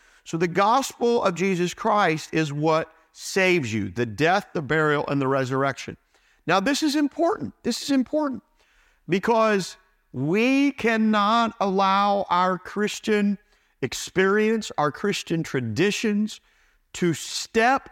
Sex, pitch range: male, 140-195 Hz